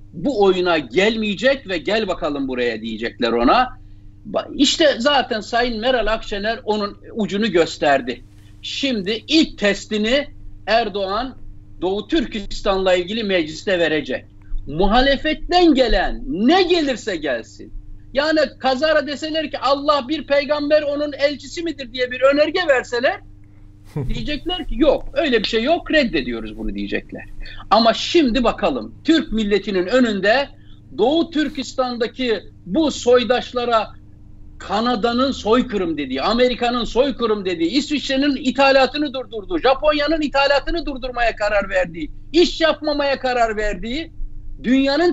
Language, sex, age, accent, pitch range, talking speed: Turkish, male, 60-79, native, 185-280 Hz, 110 wpm